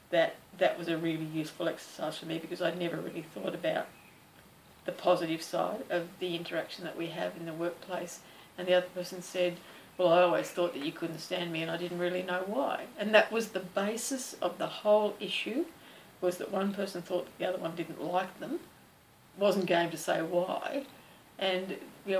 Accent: Australian